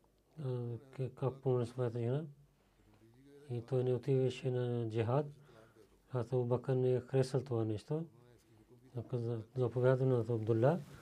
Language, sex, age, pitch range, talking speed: Bulgarian, male, 40-59, 120-135 Hz, 115 wpm